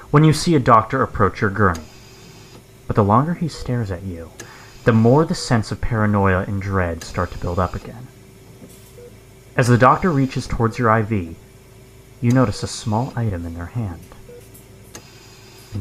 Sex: male